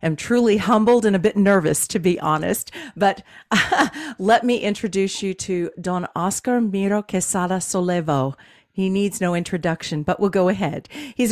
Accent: American